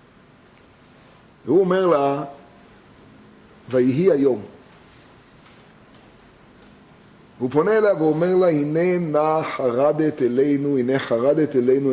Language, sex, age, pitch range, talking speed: Hebrew, male, 40-59, 135-175 Hz, 85 wpm